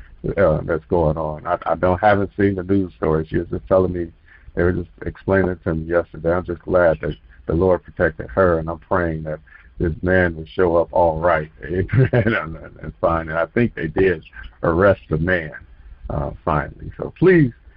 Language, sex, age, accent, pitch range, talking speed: English, male, 50-69, American, 80-125 Hz, 210 wpm